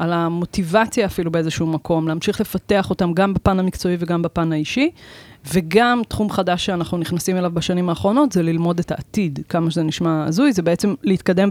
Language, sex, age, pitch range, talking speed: Hebrew, female, 20-39, 170-195 Hz, 170 wpm